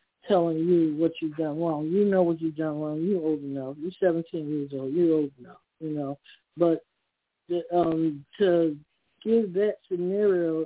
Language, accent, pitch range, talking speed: English, American, 165-195 Hz, 175 wpm